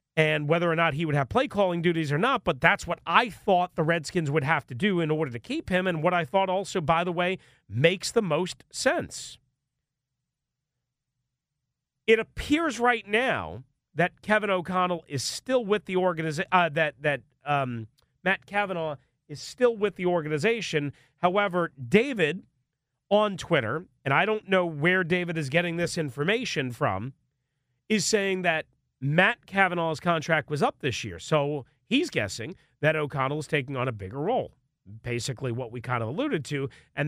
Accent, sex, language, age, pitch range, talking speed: American, male, English, 40-59, 135-180 Hz, 170 wpm